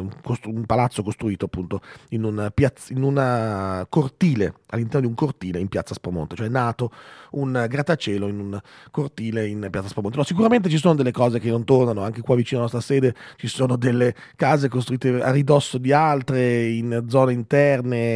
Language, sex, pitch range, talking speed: Italian, male, 110-145 Hz, 190 wpm